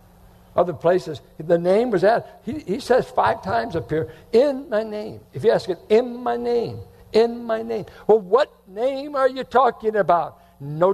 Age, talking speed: 60-79, 185 wpm